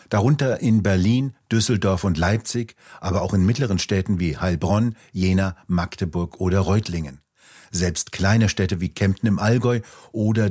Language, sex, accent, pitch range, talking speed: German, male, German, 95-115 Hz, 145 wpm